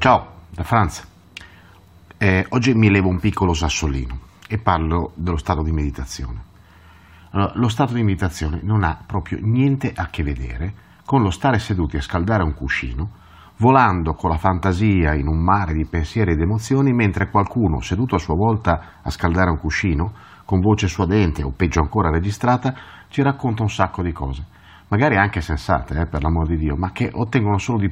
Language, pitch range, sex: Italian, 85-110 Hz, male